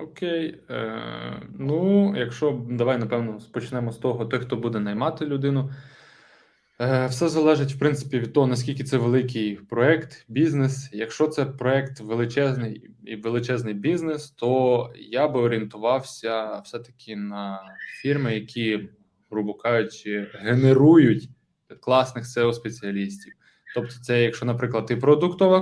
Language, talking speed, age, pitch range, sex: Ukrainian, 125 wpm, 20-39, 110-140 Hz, male